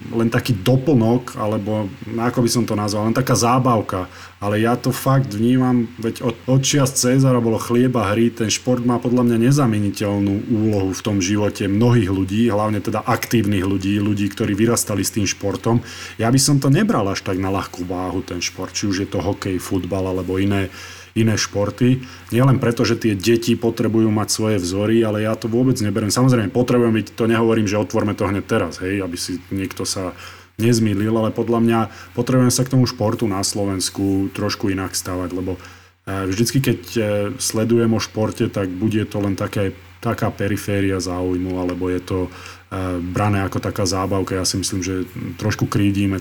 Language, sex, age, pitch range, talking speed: Slovak, male, 30-49, 95-115 Hz, 180 wpm